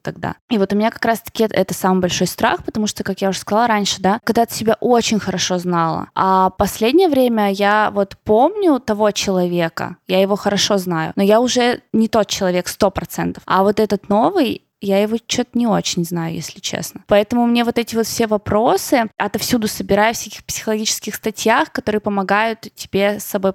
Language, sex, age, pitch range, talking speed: Russian, female, 20-39, 195-240 Hz, 190 wpm